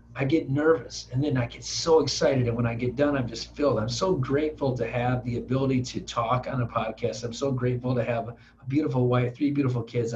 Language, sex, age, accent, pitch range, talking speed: English, male, 40-59, American, 120-150 Hz, 235 wpm